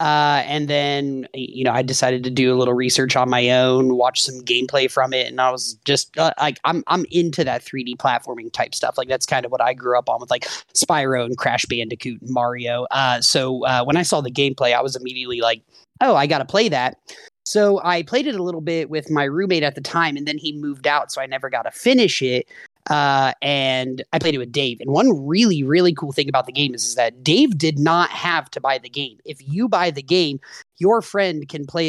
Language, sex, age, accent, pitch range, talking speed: English, male, 30-49, American, 130-165 Hz, 245 wpm